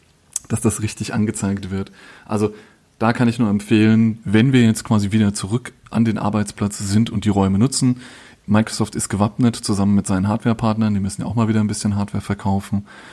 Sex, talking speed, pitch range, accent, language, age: male, 190 wpm, 100-115 Hz, German, German, 30-49